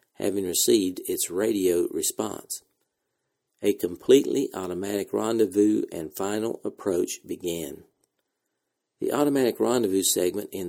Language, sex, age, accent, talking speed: English, male, 50-69, American, 100 wpm